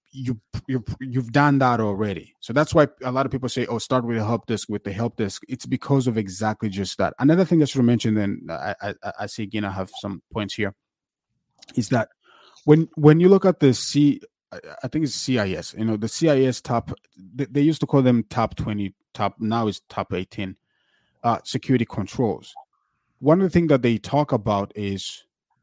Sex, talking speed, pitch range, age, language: male, 205 wpm, 105-130 Hz, 30-49, English